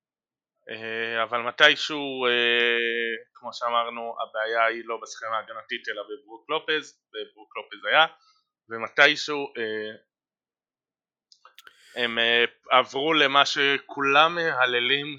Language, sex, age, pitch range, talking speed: Hebrew, male, 30-49, 120-155 Hz, 100 wpm